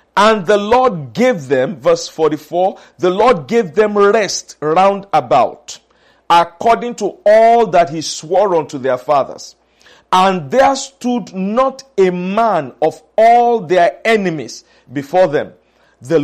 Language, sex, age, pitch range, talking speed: English, male, 50-69, 150-215 Hz, 135 wpm